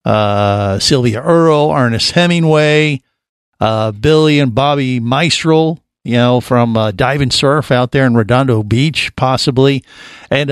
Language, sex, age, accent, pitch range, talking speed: English, male, 50-69, American, 120-155 Hz, 135 wpm